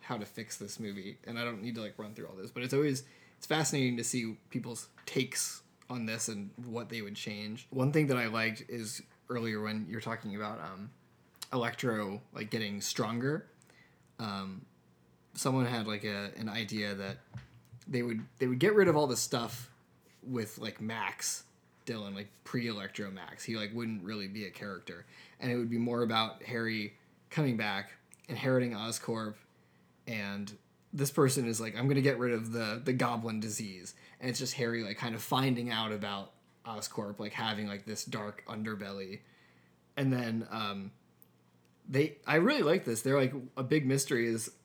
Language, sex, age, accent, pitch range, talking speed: English, male, 20-39, American, 100-125 Hz, 185 wpm